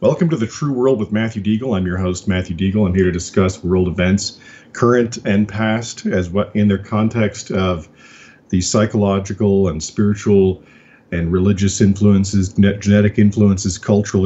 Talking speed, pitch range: 165 wpm, 95-115 Hz